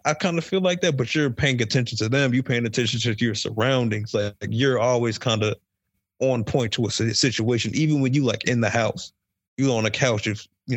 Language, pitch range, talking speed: English, 105-125 Hz, 235 wpm